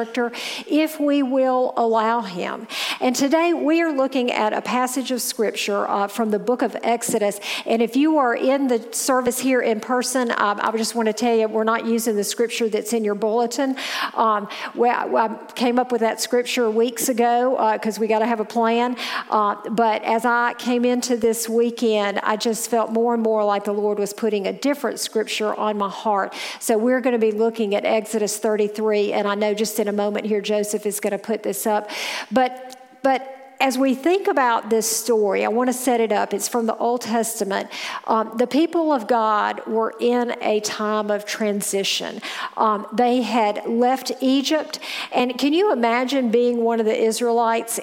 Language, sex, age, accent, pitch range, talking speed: English, female, 50-69, American, 220-255 Hz, 200 wpm